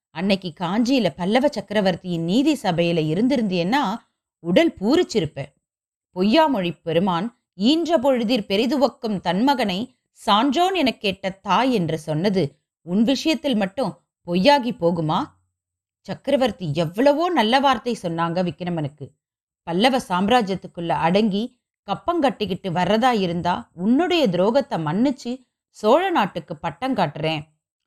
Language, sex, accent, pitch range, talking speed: Tamil, female, native, 170-260 Hz, 95 wpm